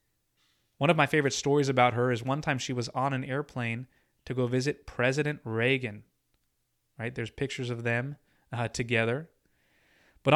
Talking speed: 160 wpm